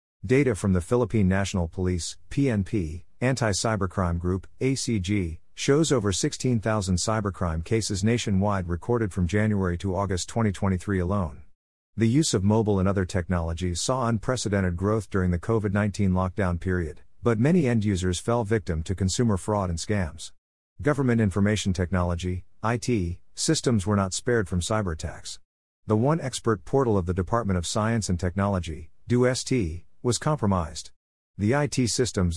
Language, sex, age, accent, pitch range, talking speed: English, male, 50-69, American, 90-115 Hz, 140 wpm